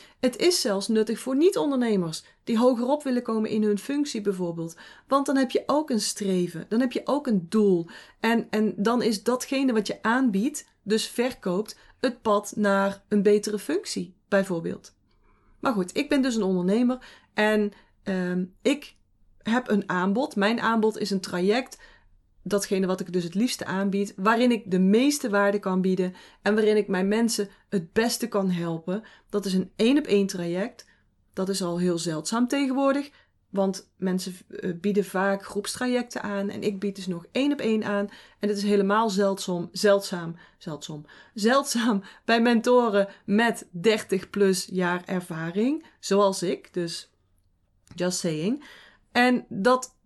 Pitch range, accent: 185-235 Hz, Dutch